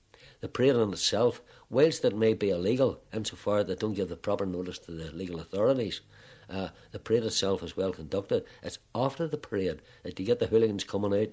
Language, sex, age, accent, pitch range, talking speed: English, male, 60-79, Irish, 95-115 Hz, 205 wpm